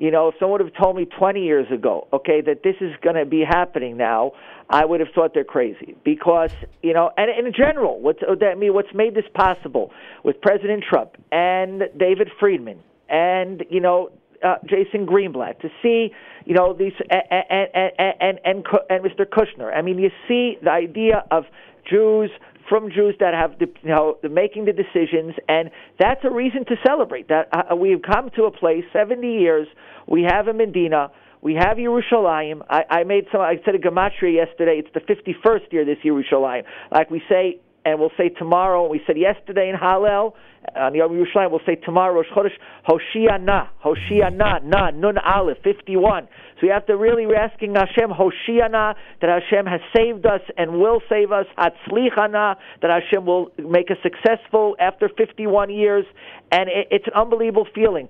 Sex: male